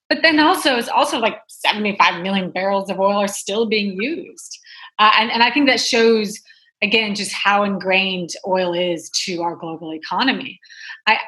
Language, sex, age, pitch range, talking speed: English, female, 30-49, 190-240 Hz, 175 wpm